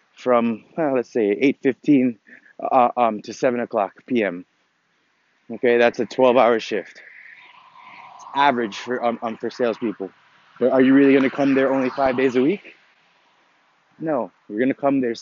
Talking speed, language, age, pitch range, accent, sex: 160 wpm, English, 20-39, 125-170 Hz, American, male